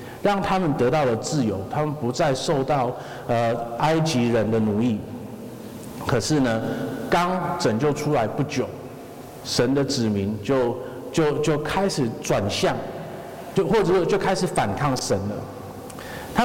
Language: Chinese